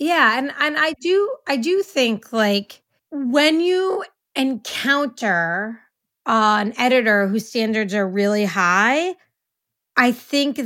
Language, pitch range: English, 210-255 Hz